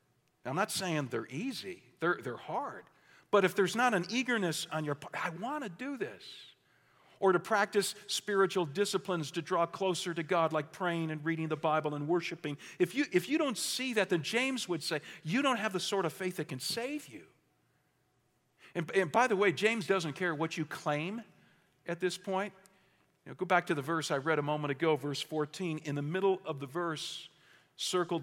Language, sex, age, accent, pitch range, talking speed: English, male, 50-69, American, 150-190 Hz, 200 wpm